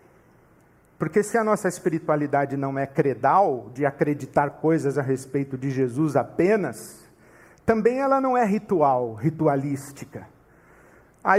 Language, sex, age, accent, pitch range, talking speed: Portuguese, male, 50-69, Brazilian, 145-195 Hz, 120 wpm